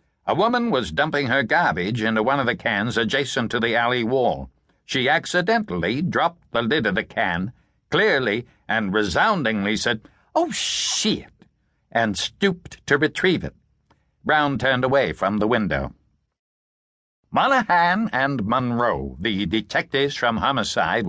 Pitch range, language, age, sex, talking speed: 120-185 Hz, English, 60-79, male, 135 wpm